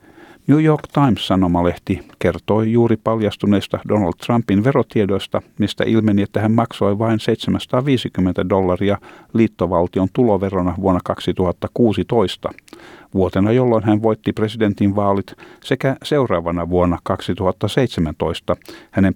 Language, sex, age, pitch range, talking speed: Finnish, male, 50-69, 90-115 Hz, 95 wpm